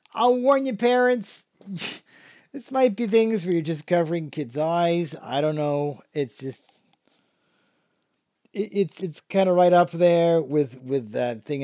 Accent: American